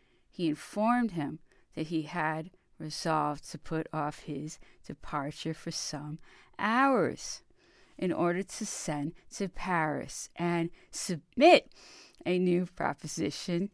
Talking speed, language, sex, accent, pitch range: 115 wpm, English, female, American, 160-220 Hz